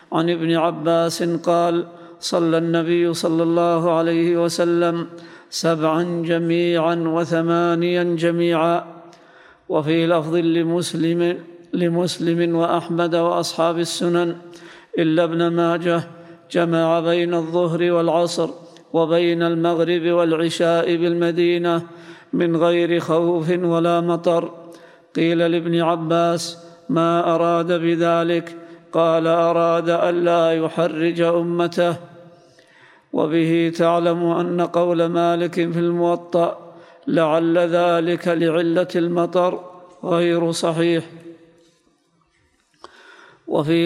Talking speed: 85 wpm